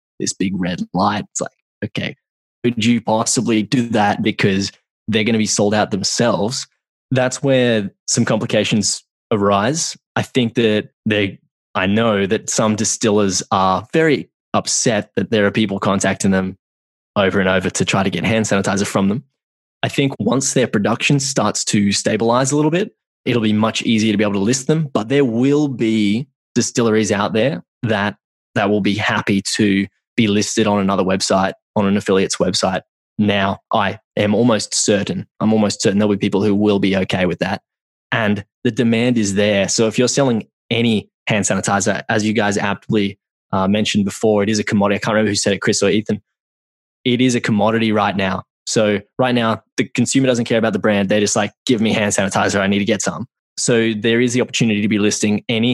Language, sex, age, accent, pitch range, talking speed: English, male, 20-39, Australian, 100-120 Hz, 195 wpm